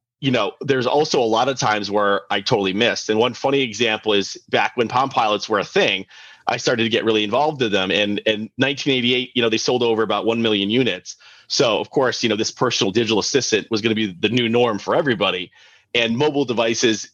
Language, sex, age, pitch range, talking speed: English, male, 30-49, 110-130 Hz, 230 wpm